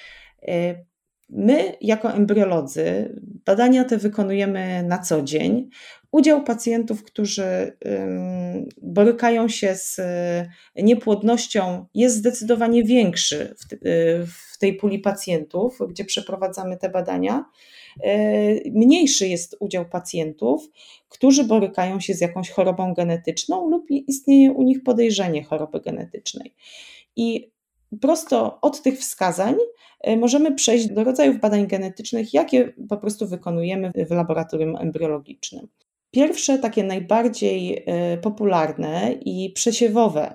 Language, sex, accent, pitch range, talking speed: Polish, female, native, 175-240 Hz, 105 wpm